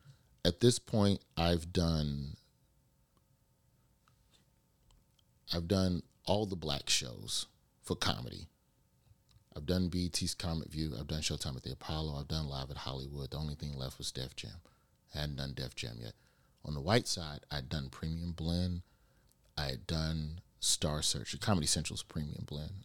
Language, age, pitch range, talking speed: English, 40-59, 75-100 Hz, 150 wpm